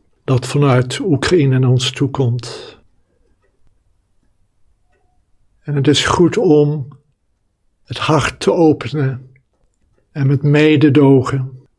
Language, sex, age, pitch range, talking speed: Dutch, male, 60-79, 100-145 Hz, 90 wpm